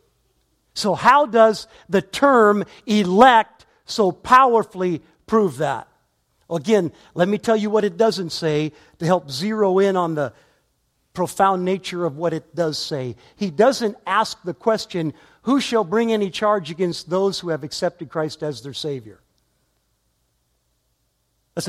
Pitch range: 155-215 Hz